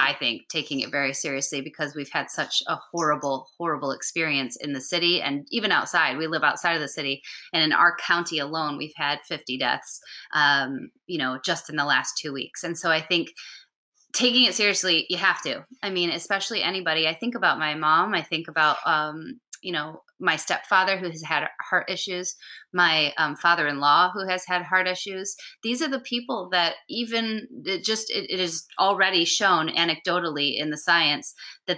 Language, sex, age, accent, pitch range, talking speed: English, female, 30-49, American, 155-190 Hz, 190 wpm